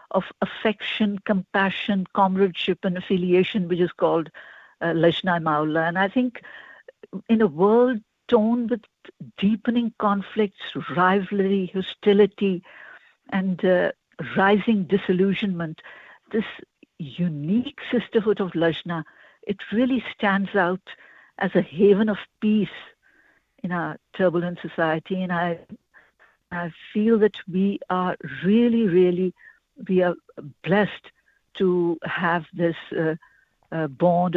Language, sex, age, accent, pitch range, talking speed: English, female, 60-79, Indian, 175-220 Hz, 115 wpm